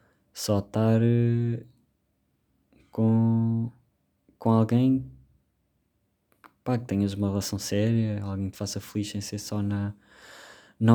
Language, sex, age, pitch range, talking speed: Portuguese, male, 20-39, 95-115 Hz, 110 wpm